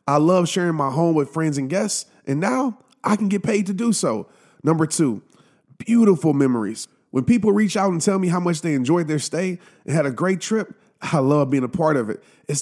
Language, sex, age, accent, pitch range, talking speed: English, male, 30-49, American, 165-210 Hz, 230 wpm